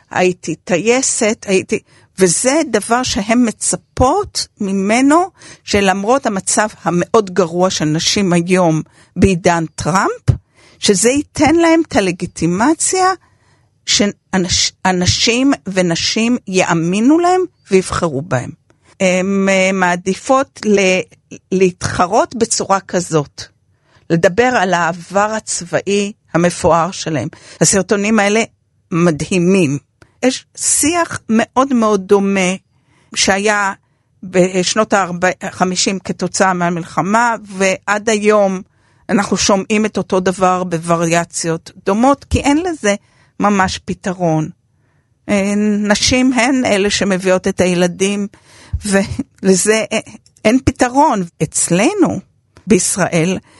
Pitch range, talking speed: 175-215 Hz, 85 wpm